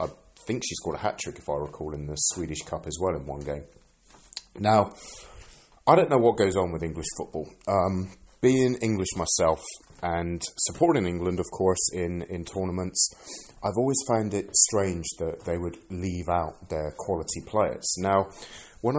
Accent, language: British, English